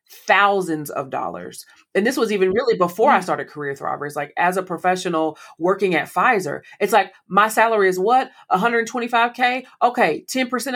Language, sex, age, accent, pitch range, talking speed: English, female, 30-49, American, 155-190 Hz, 160 wpm